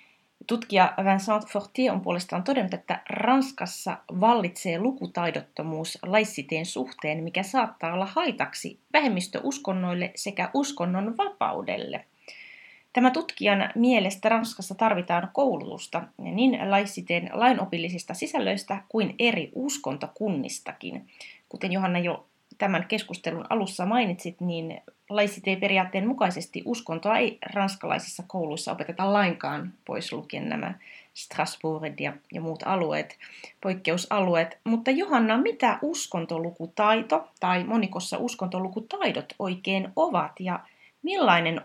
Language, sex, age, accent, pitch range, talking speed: Finnish, female, 30-49, native, 175-235 Hz, 100 wpm